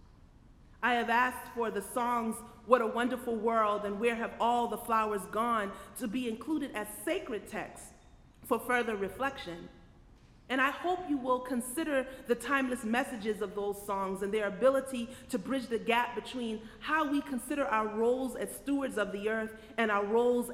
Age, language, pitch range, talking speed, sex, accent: 30-49, English, 210-260 Hz, 170 wpm, female, American